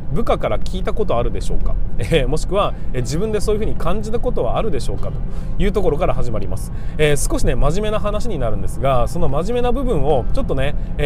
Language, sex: Japanese, male